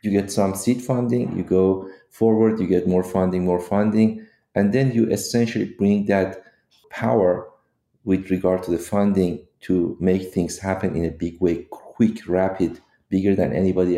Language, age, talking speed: English, 40-59, 170 wpm